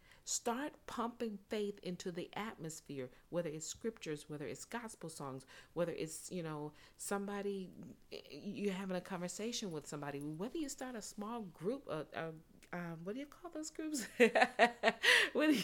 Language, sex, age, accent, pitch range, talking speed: English, female, 40-59, American, 155-230 Hz, 155 wpm